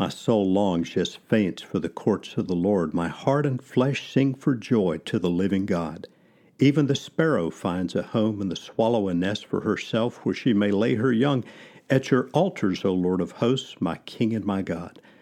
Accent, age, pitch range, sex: American, 50-69, 95-130 Hz, male